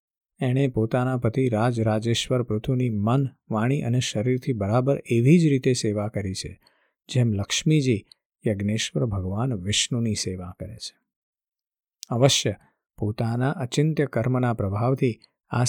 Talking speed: 100 wpm